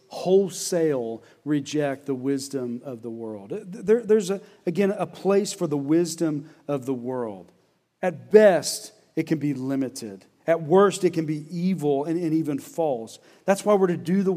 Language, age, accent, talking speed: English, 40-59, American, 165 wpm